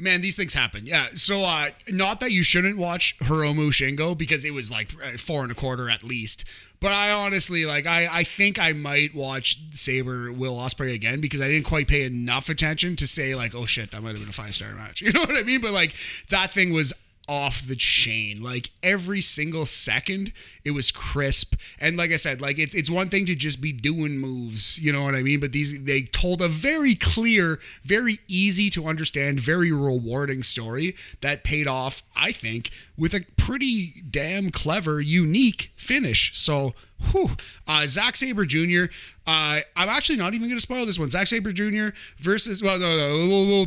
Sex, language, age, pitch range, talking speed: male, English, 30-49, 140-190 Hz, 205 wpm